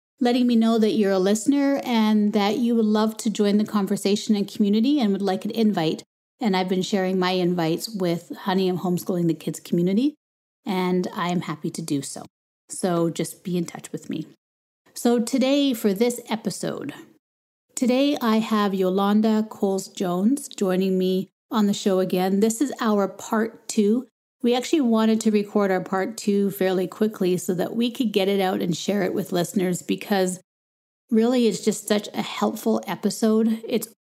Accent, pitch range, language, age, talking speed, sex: American, 190-230 Hz, English, 30-49, 180 wpm, female